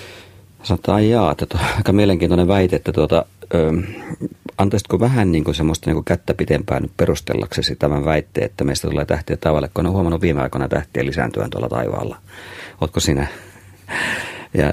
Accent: native